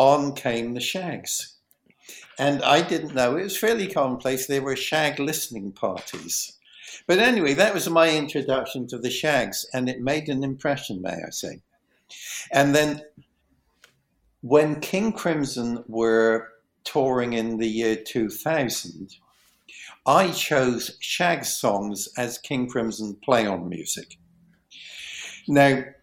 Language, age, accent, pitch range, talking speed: English, 60-79, British, 115-145 Hz, 130 wpm